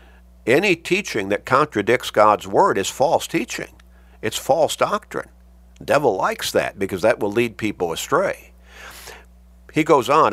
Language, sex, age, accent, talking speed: English, male, 50-69, American, 145 wpm